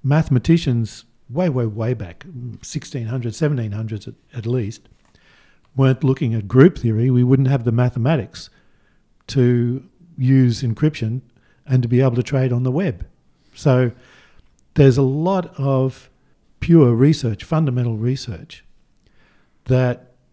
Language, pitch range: English, 115-140 Hz